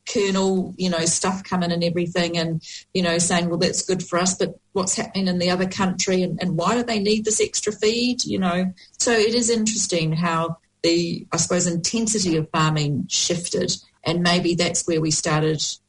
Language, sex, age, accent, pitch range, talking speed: English, female, 40-59, Australian, 165-195 Hz, 195 wpm